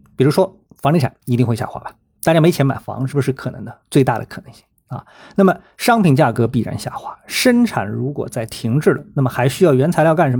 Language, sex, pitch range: Chinese, male, 120-170 Hz